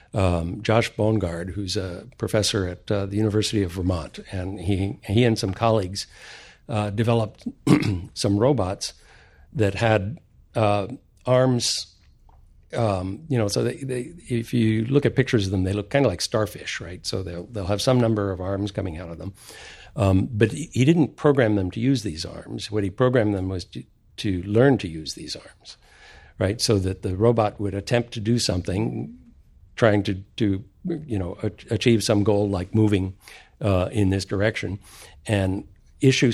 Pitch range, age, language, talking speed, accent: 95-115 Hz, 60-79, English, 175 wpm, American